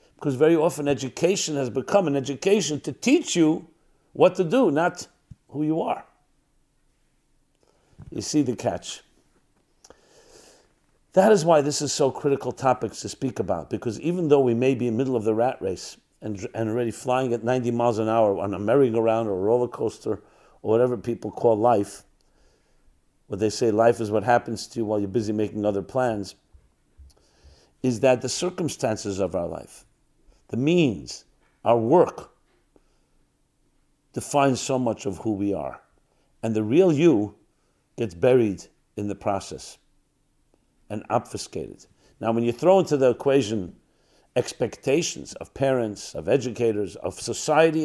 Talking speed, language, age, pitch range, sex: 155 wpm, English, 50-69, 105-145 Hz, male